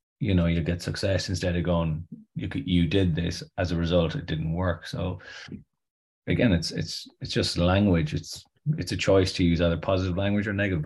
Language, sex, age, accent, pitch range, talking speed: English, male, 30-49, Irish, 85-95 Hz, 205 wpm